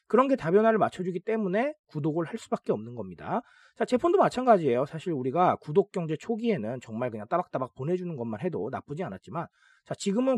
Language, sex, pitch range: Korean, male, 140-210 Hz